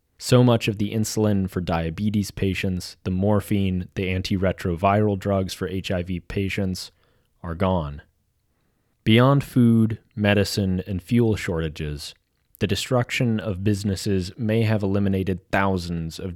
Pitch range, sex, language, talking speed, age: 90-110 Hz, male, English, 120 wpm, 30-49